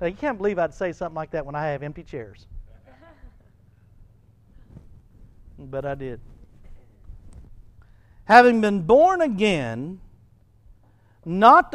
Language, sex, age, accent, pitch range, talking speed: English, male, 60-79, American, 130-220 Hz, 105 wpm